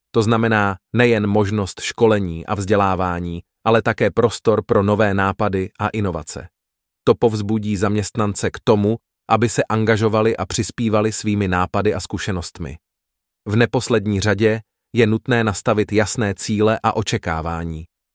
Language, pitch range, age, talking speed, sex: English, 100-115 Hz, 30-49, 130 wpm, male